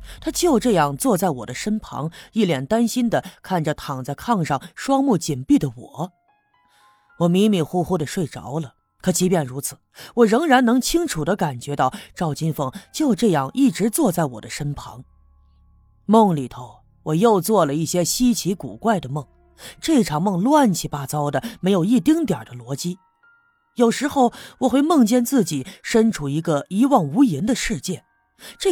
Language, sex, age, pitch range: Chinese, female, 30-49, 145-235 Hz